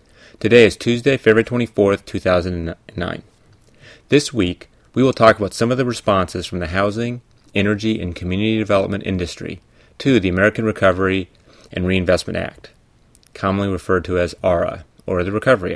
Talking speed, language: 150 wpm, English